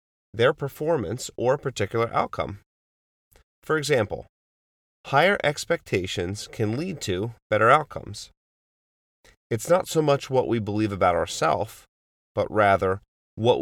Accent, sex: American, male